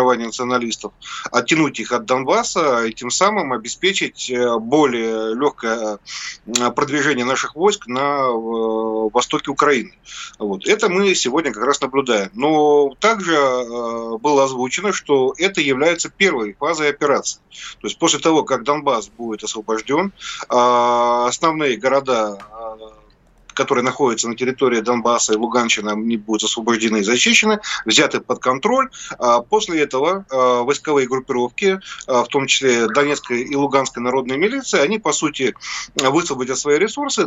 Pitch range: 120-165 Hz